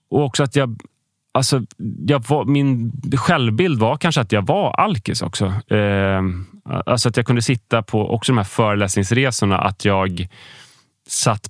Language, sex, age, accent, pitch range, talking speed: Swedish, male, 30-49, native, 95-130 Hz, 155 wpm